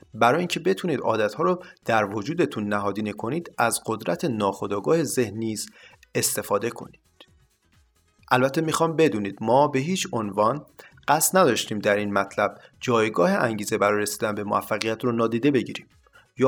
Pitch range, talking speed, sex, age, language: 105-150 Hz, 135 wpm, male, 30-49, Persian